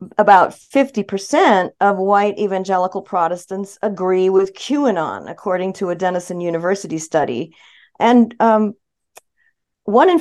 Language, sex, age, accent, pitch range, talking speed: English, female, 50-69, American, 185-235 Hz, 110 wpm